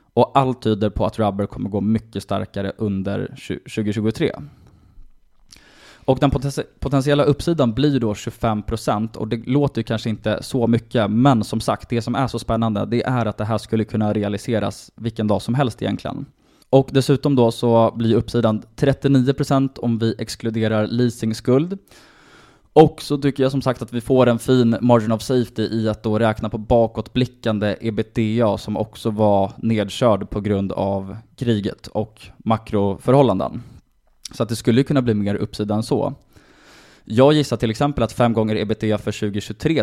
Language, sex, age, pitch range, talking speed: Swedish, male, 20-39, 105-125 Hz, 165 wpm